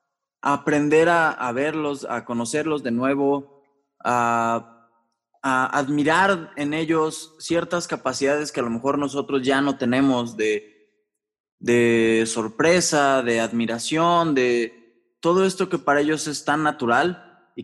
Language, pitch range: Spanish, 120-155 Hz